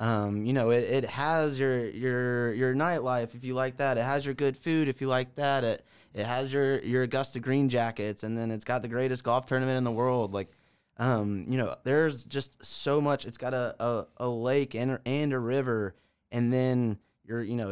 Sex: male